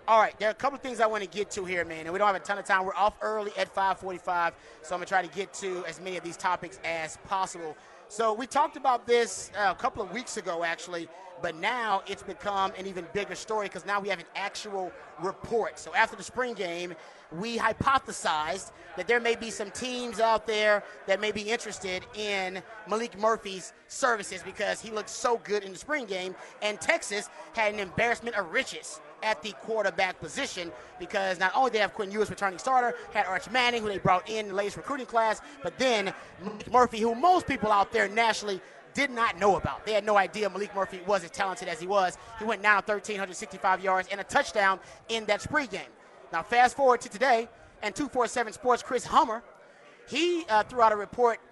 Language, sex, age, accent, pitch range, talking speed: English, male, 30-49, American, 190-230 Hz, 220 wpm